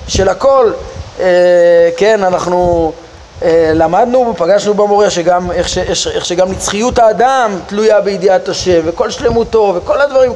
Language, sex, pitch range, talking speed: Hebrew, male, 170-230 Hz, 110 wpm